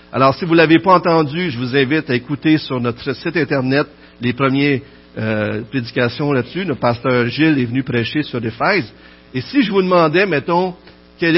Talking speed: 190 wpm